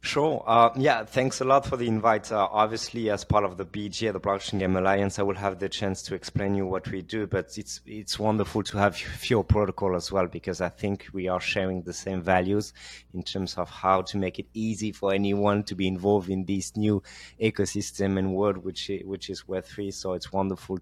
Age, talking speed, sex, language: 20-39, 220 wpm, male, English